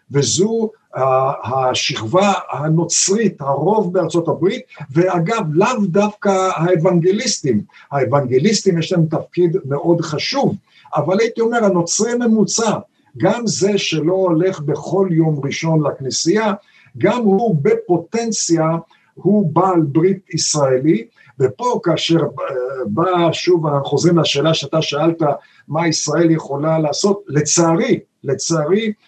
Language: Hebrew